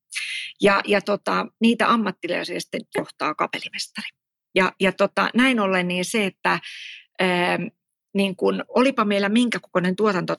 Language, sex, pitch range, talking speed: Finnish, female, 185-215 Hz, 140 wpm